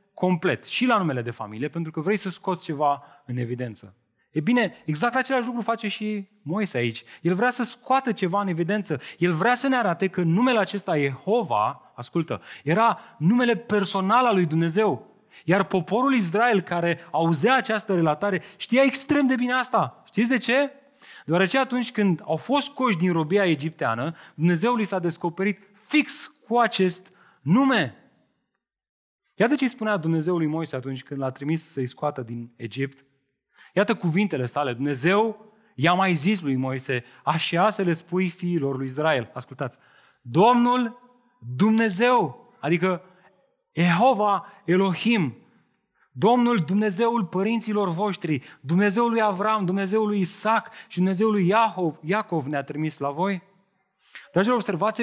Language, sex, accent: Romanian, male, native